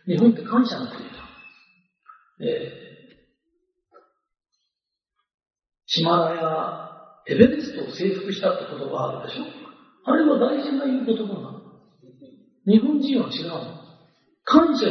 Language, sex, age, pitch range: Japanese, male, 40-59, 200-295 Hz